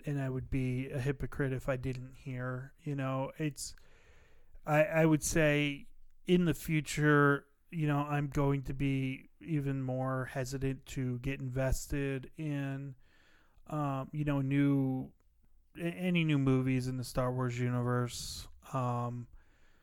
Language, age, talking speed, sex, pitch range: English, 30-49, 140 wpm, male, 130-155 Hz